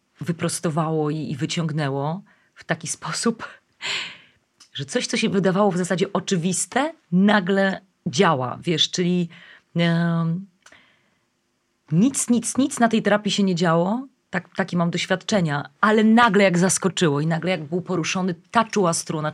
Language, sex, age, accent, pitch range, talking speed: Polish, female, 30-49, native, 160-185 Hz, 135 wpm